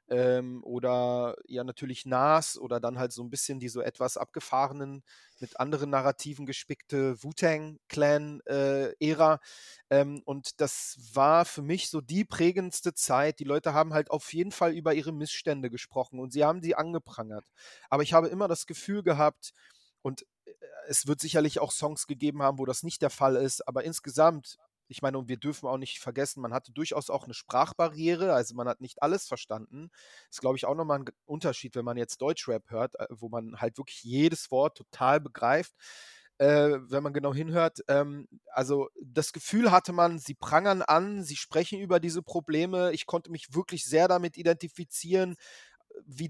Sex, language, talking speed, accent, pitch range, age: male, German, 175 wpm, German, 135-170 Hz, 30-49